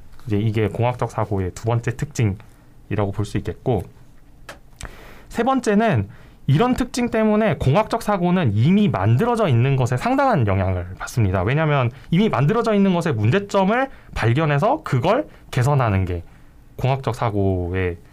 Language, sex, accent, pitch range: Korean, male, native, 105-160 Hz